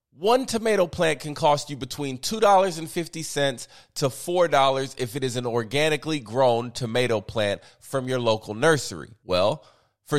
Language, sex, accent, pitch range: English, male, American, 130-175 Hz